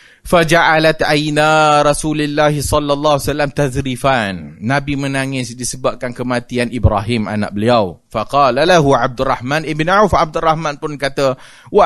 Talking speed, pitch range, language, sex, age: 115 wpm, 130-170 Hz, Malay, male, 30-49